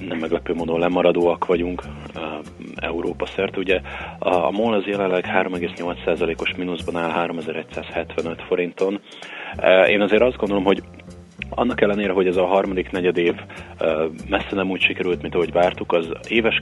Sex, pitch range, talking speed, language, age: male, 85-95 Hz, 135 wpm, Hungarian, 30-49